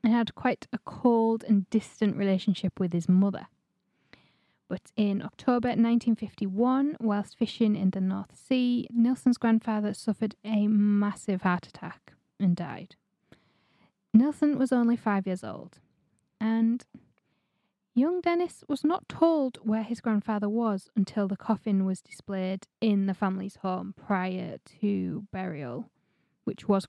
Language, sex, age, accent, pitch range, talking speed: English, female, 10-29, British, 190-230 Hz, 135 wpm